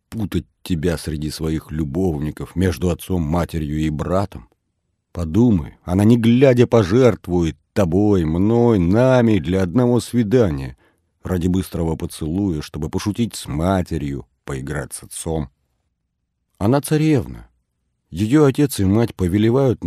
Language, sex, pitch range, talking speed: Russian, male, 80-115 Hz, 110 wpm